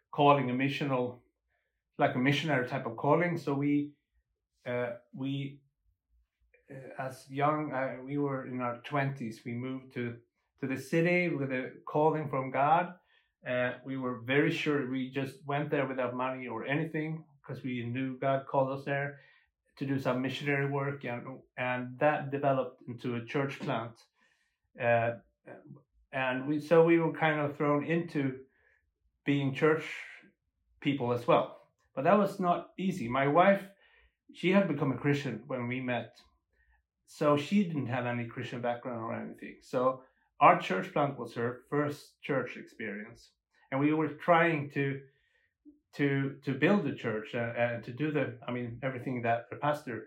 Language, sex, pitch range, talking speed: English, male, 125-150 Hz, 160 wpm